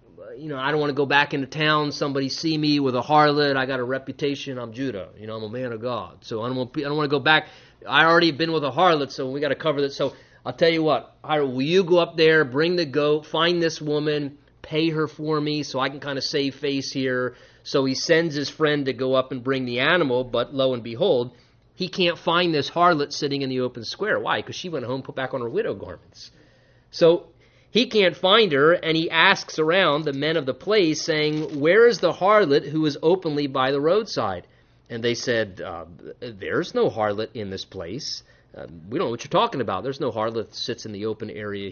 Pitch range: 130-160 Hz